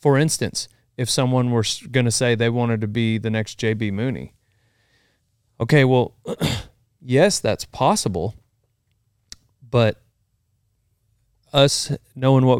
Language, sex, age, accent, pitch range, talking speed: English, male, 30-49, American, 110-130 Hz, 115 wpm